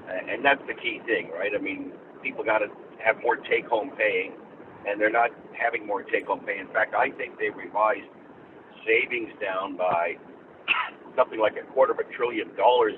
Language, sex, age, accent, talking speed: English, male, 50-69, American, 190 wpm